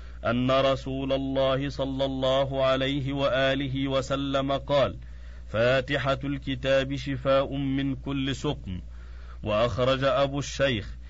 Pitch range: 120-140 Hz